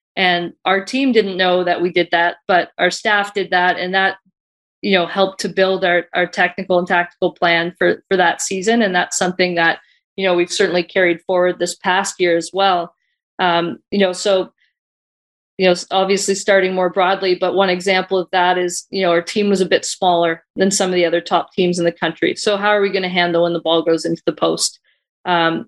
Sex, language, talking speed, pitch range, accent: female, English, 220 wpm, 175-195 Hz, American